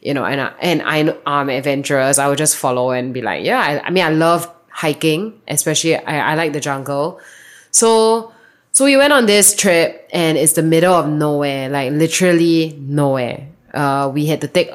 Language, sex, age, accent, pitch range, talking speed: Filipino, female, 20-39, Malaysian, 140-165 Hz, 195 wpm